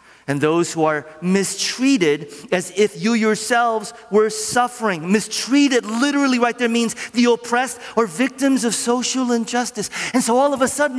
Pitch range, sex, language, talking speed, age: 245-315 Hz, male, English, 160 wpm, 30-49